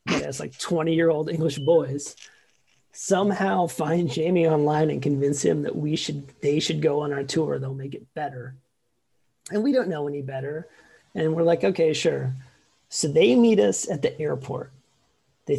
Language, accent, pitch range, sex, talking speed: English, American, 140-175 Hz, male, 175 wpm